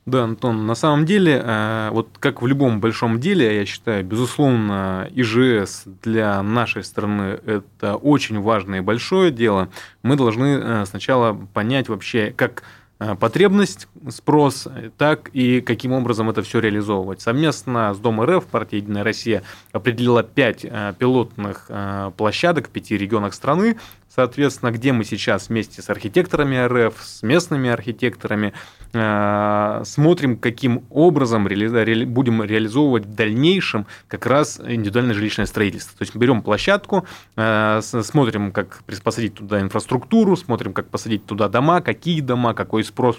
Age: 20-39